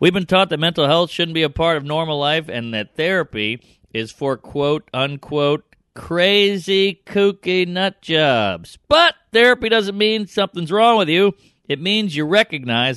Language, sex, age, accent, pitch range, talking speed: English, male, 40-59, American, 145-195 Hz, 165 wpm